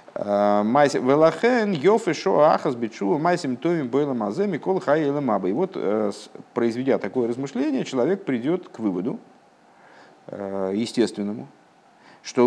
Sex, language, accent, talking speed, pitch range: male, Russian, native, 55 wpm, 110-155 Hz